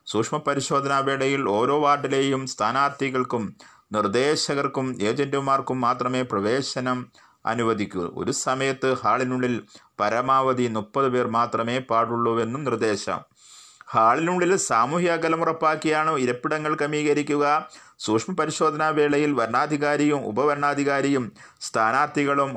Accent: native